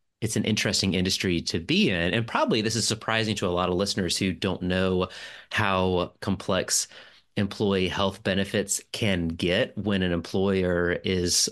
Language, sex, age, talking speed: English, male, 30-49, 160 wpm